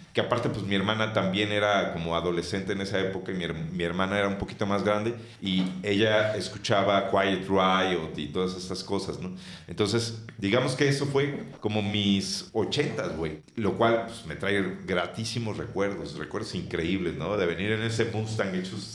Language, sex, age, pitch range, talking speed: Spanish, male, 40-59, 95-115 Hz, 175 wpm